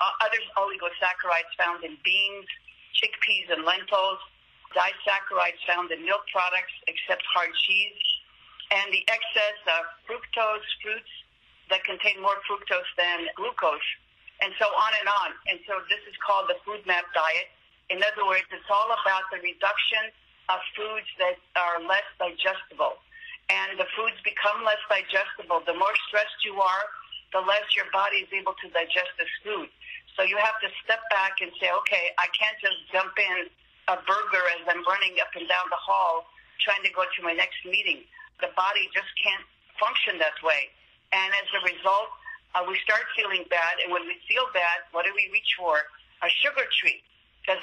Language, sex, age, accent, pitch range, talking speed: English, female, 50-69, American, 185-220 Hz, 175 wpm